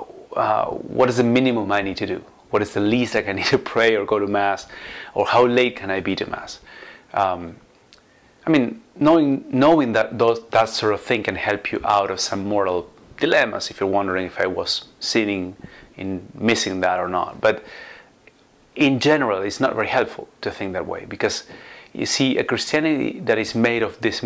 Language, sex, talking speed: English, male, 205 wpm